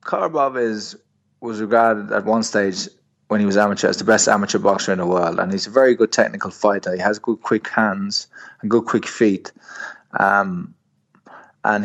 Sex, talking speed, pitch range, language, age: male, 185 wpm, 100-115 Hz, English, 20-39